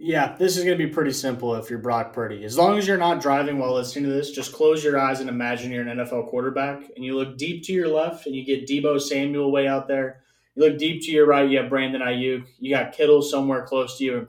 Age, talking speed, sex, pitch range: 20-39, 275 wpm, male, 115-145 Hz